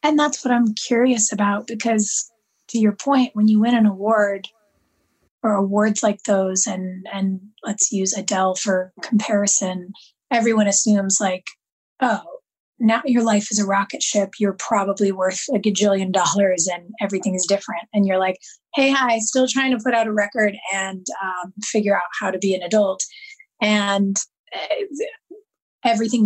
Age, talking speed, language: 20-39, 160 wpm, English